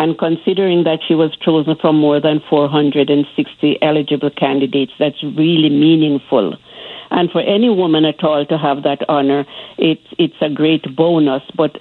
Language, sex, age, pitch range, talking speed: English, female, 60-79, 145-160 Hz, 160 wpm